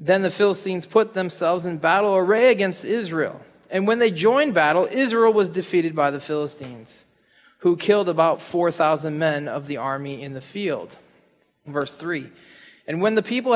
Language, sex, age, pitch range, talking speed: English, male, 20-39, 165-225 Hz, 170 wpm